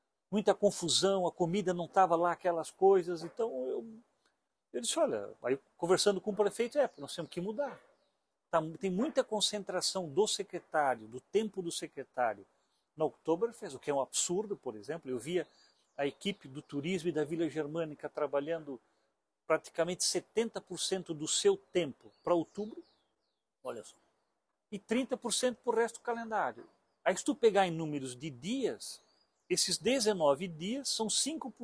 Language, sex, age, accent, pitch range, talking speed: Portuguese, male, 50-69, Brazilian, 160-215 Hz, 155 wpm